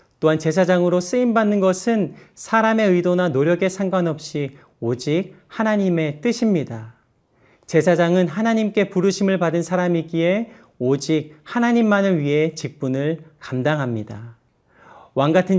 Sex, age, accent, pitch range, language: male, 40-59, native, 155-190 Hz, Korean